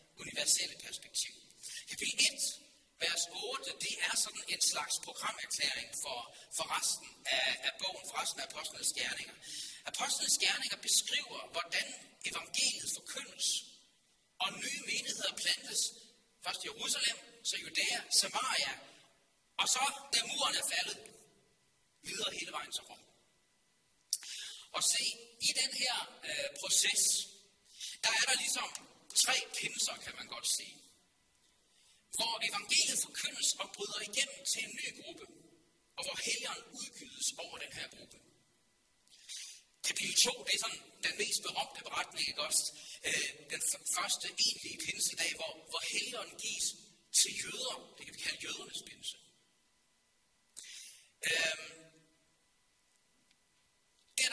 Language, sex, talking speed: Danish, male, 125 wpm